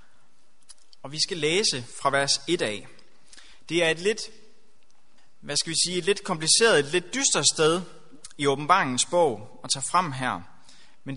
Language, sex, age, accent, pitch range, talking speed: Danish, male, 30-49, native, 130-180 Hz, 165 wpm